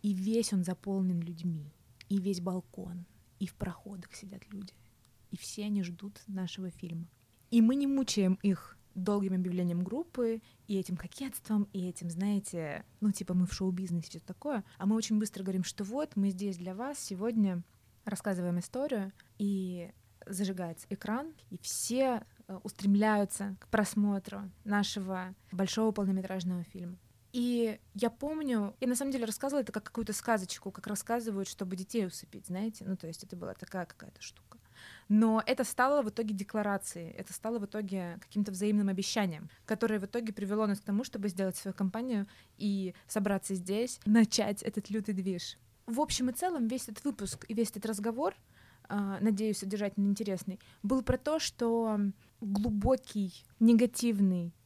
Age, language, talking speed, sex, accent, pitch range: 20-39, Russian, 155 wpm, female, native, 185-225 Hz